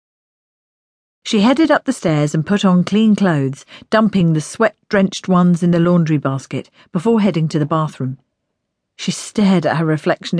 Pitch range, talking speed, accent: 155-210 Hz, 165 wpm, British